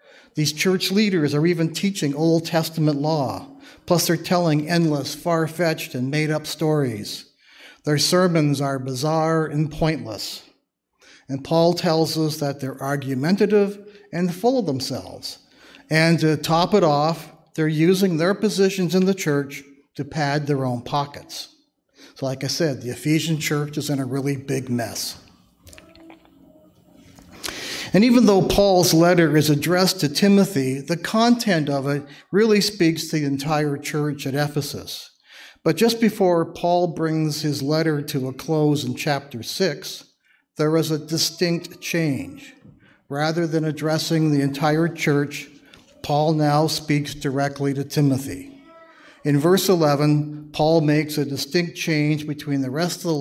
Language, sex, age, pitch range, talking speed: English, male, 50-69, 145-170 Hz, 145 wpm